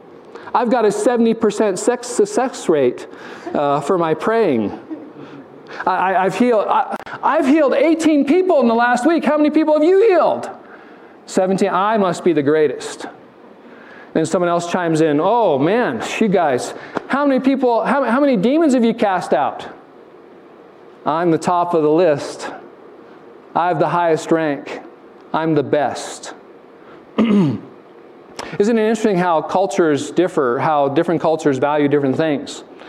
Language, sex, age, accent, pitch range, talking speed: English, male, 40-59, American, 155-245 Hz, 150 wpm